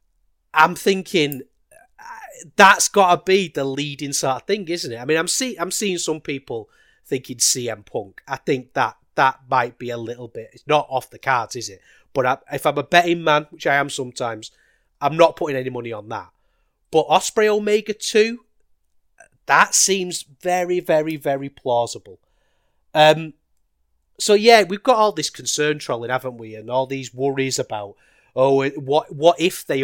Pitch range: 130-195 Hz